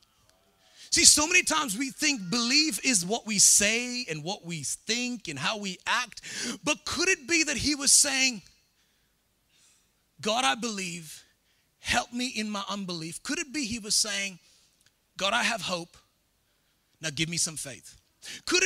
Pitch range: 195-265 Hz